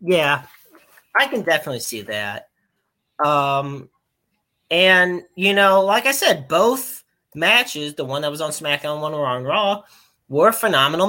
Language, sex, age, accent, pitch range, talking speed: English, male, 30-49, American, 125-175 Hz, 145 wpm